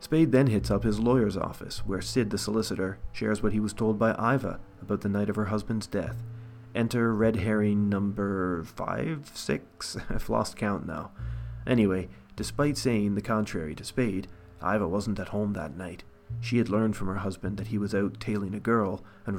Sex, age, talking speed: male, 30-49, 190 wpm